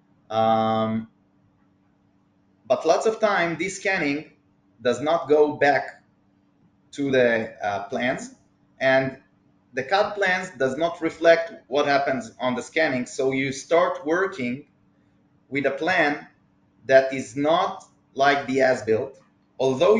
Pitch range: 115-160 Hz